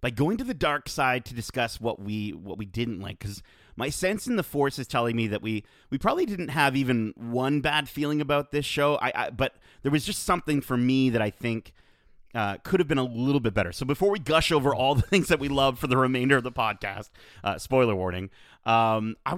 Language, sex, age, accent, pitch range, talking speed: English, male, 30-49, American, 115-150 Hz, 240 wpm